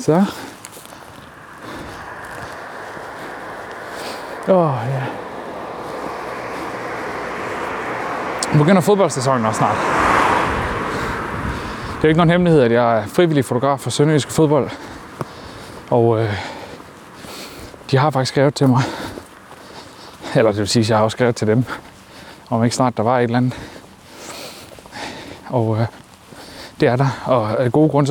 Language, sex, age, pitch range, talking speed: Danish, male, 30-49, 110-140 Hz, 140 wpm